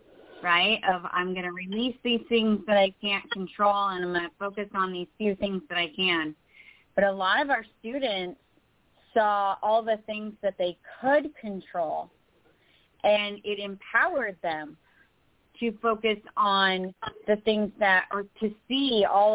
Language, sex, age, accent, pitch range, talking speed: English, female, 30-49, American, 180-215 Hz, 160 wpm